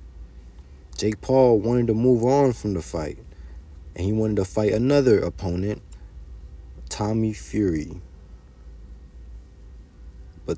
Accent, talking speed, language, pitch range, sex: American, 110 wpm, English, 80-105 Hz, male